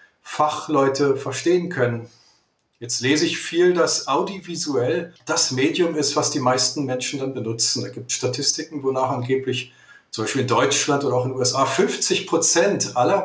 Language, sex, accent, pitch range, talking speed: German, male, German, 130-155 Hz, 165 wpm